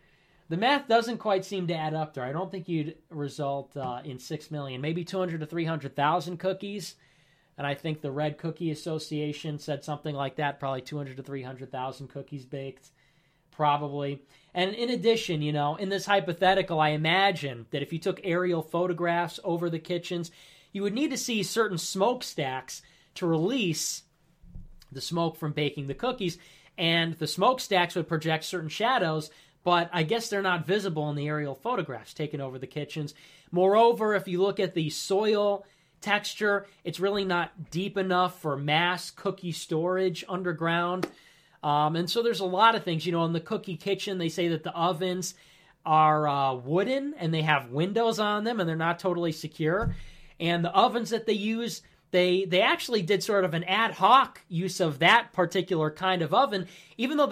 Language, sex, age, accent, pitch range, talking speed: English, male, 20-39, American, 155-190 Hz, 180 wpm